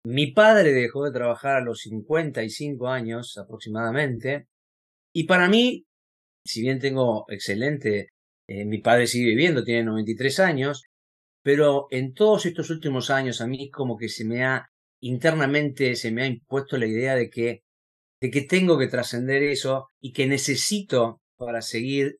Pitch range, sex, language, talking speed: 115-150 Hz, male, Spanish, 155 wpm